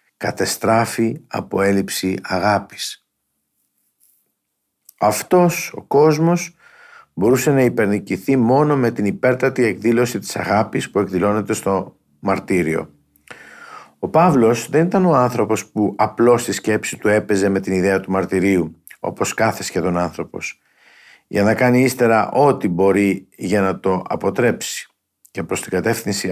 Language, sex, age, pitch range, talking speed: Greek, male, 50-69, 100-130 Hz, 130 wpm